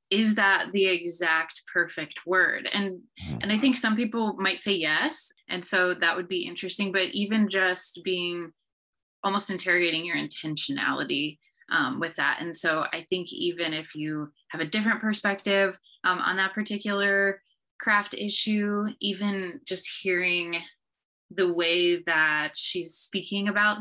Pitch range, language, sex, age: 165-205 Hz, English, female, 20-39